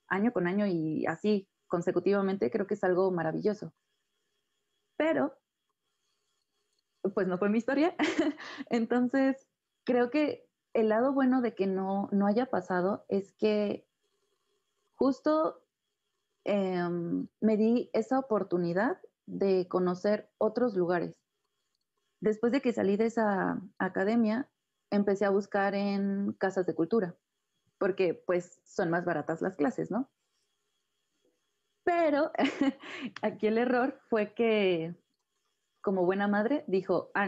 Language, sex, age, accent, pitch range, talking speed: Spanish, female, 30-49, Mexican, 190-260 Hz, 120 wpm